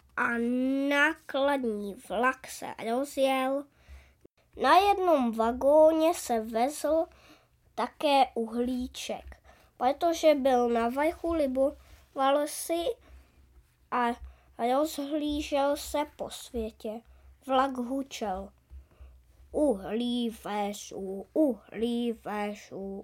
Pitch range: 230-285 Hz